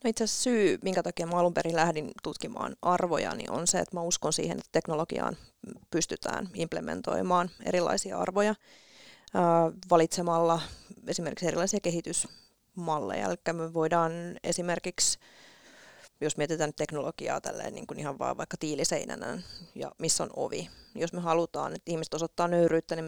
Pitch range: 160-175 Hz